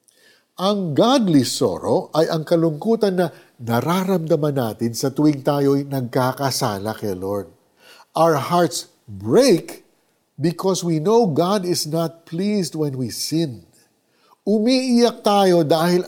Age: 50-69